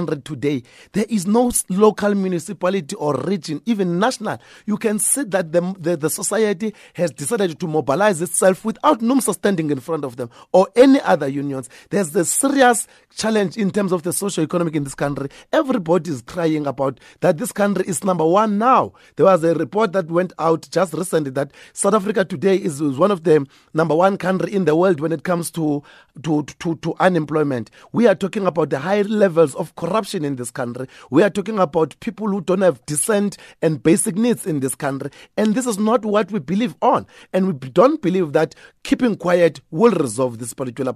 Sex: male